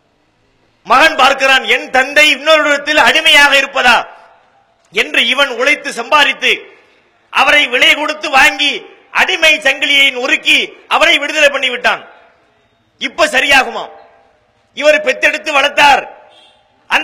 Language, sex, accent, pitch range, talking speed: English, male, Indian, 275-315 Hz, 120 wpm